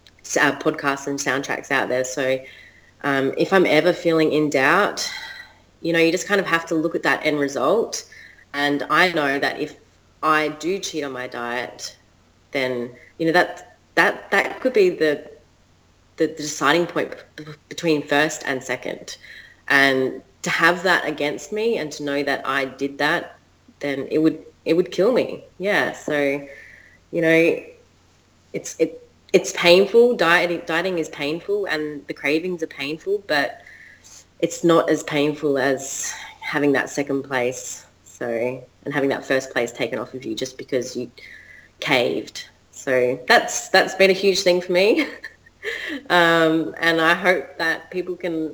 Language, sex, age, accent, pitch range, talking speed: English, female, 20-39, Australian, 135-170 Hz, 165 wpm